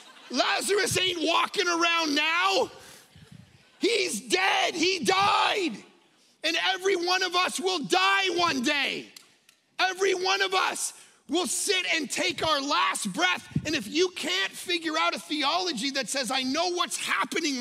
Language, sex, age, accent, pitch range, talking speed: English, male, 30-49, American, 220-335 Hz, 145 wpm